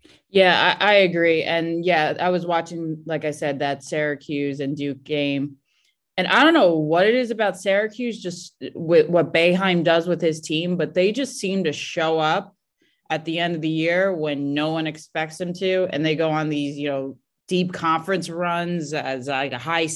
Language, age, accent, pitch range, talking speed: English, 20-39, American, 140-170 Hz, 200 wpm